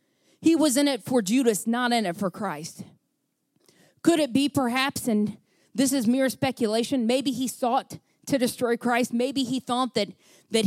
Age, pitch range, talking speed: 40-59, 200-260 Hz, 175 wpm